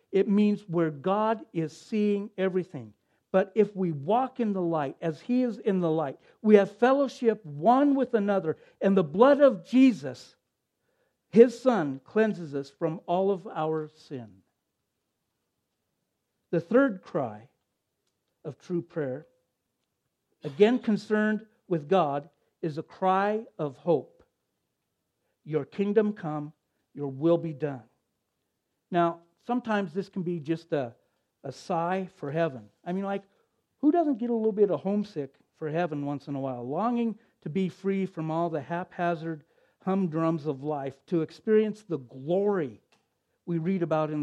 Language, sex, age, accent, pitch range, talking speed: English, male, 60-79, American, 155-210 Hz, 150 wpm